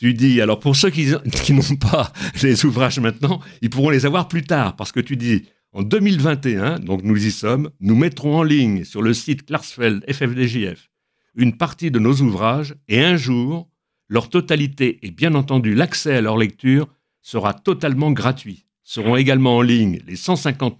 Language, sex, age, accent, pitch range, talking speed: French, male, 60-79, French, 110-145 Hz, 180 wpm